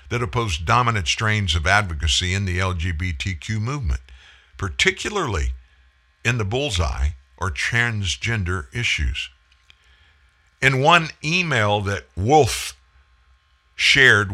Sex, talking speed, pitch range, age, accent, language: male, 95 wpm, 75-115 Hz, 50-69, American, English